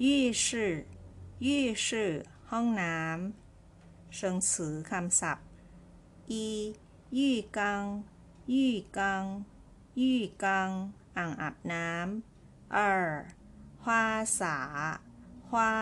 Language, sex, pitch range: Chinese, female, 155-225 Hz